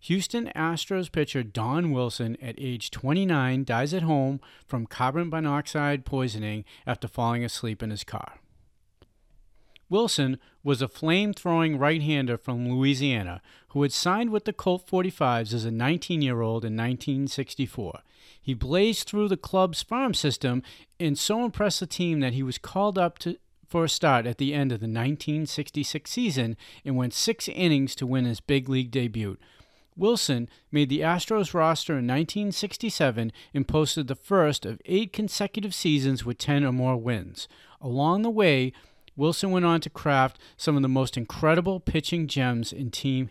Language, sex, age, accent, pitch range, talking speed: English, male, 40-59, American, 120-170 Hz, 160 wpm